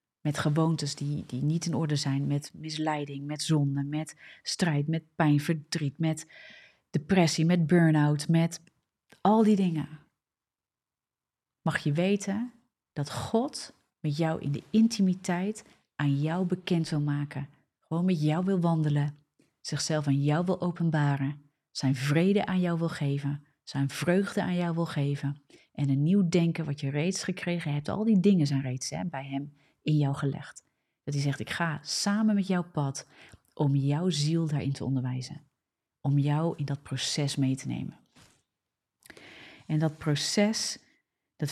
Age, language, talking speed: 30-49, Dutch, 160 wpm